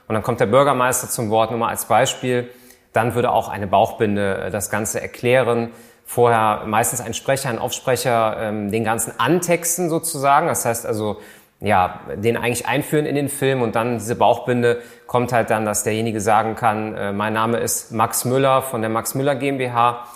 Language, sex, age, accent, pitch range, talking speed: German, male, 30-49, German, 110-135 Hz, 180 wpm